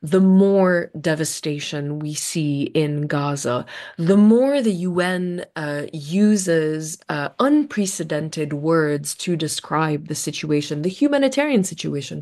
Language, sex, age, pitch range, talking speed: English, female, 20-39, 155-190 Hz, 115 wpm